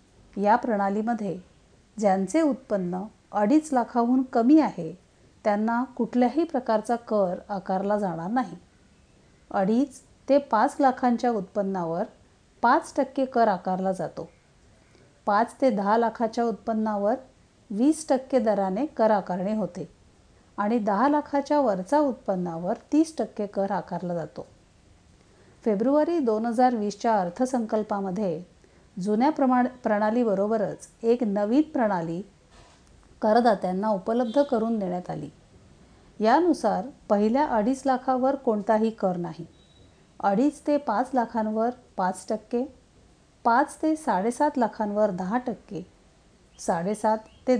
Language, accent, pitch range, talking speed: Marathi, native, 200-255 Hz, 100 wpm